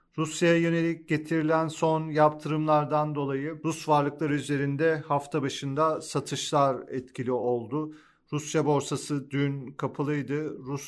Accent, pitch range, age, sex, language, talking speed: native, 130-155 Hz, 40-59, male, Turkish, 105 wpm